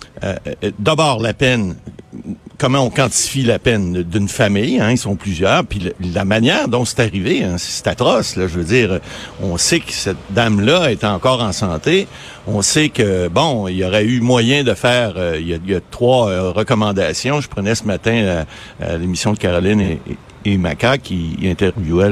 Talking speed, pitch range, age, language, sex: 200 wpm, 95-130 Hz, 60-79, French, male